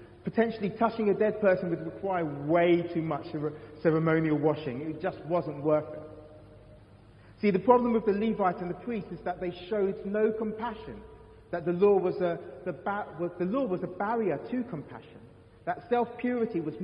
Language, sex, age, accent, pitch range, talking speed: English, male, 30-49, British, 145-195 Hz, 180 wpm